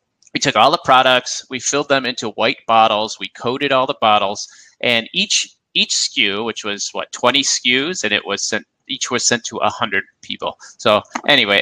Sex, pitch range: male, 110-145 Hz